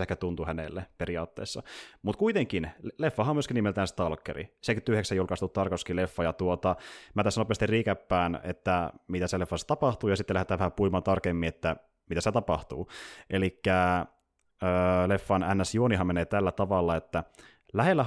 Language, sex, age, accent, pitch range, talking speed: Finnish, male, 30-49, native, 90-110 Hz, 145 wpm